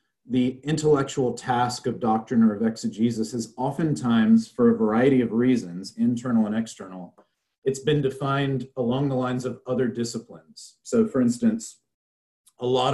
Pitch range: 110-145 Hz